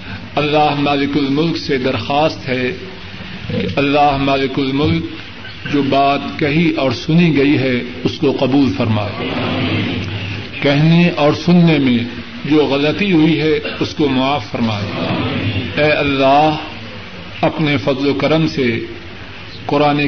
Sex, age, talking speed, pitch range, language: male, 50-69, 125 wpm, 120-160 Hz, Urdu